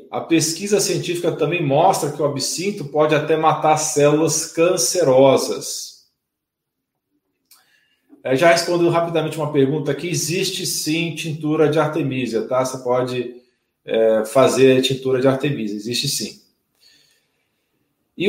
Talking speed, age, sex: 120 wpm, 40-59, male